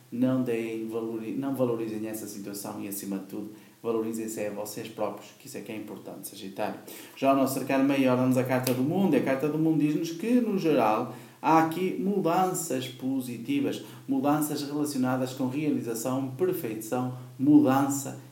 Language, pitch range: Portuguese, 110-150 Hz